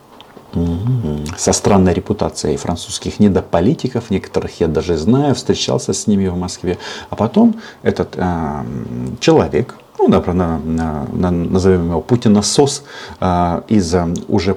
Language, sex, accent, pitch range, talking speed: Russian, male, native, 85-105 Hz, 125 wpm